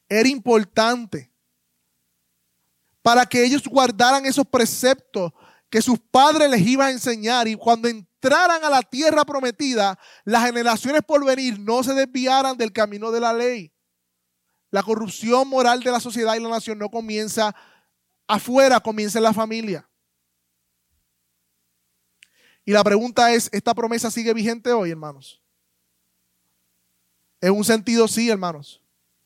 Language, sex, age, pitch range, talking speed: Spanish, male, 20-39, 175-240 Hz, 135 wpm